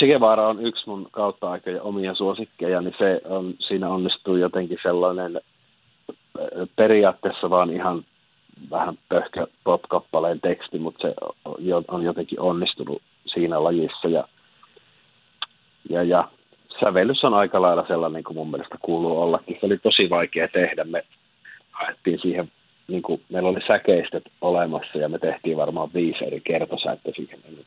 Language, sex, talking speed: Finnish, male, 135 wpm